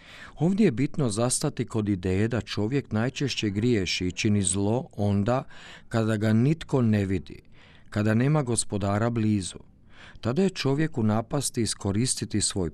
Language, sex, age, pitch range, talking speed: Croatian, male, 50-69, 100-125 Hz, 140 wpm